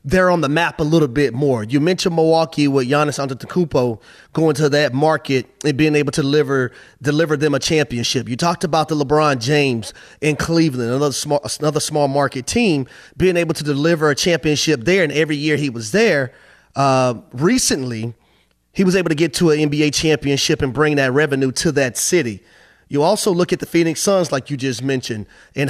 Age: 30-49